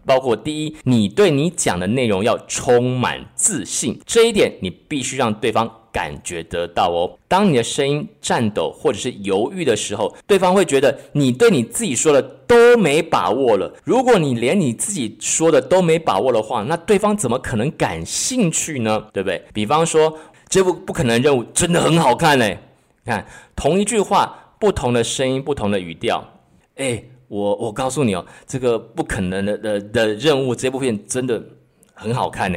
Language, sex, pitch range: Chinese, male, 105-170 Hz